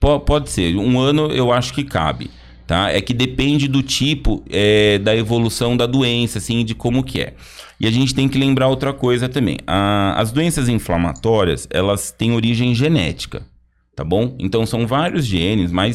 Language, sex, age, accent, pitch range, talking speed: Portuguese, male, 30-49, Brazilian, 105-135 Hz, 180 wpm